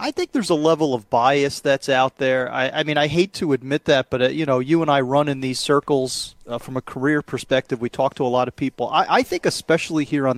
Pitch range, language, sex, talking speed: 130-160 Hz, English, male, 270 wpm